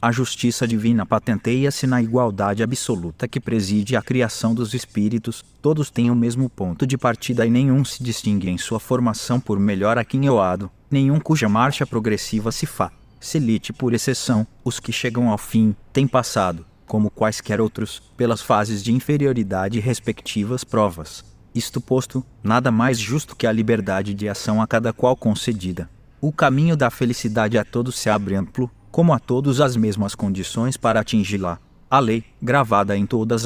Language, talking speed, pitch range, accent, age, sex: Portuguese, 165 wpm, 105-125 Hz, Brazilian, 20-39, male